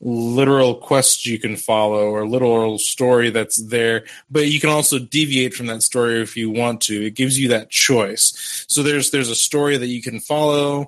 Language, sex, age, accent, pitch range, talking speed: English, male, 20-39, American, 110-130 Hz, 200 wpm